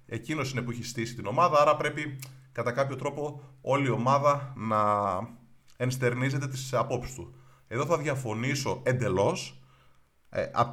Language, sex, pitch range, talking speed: Greek, male, 120-145 Hz, 140 wpm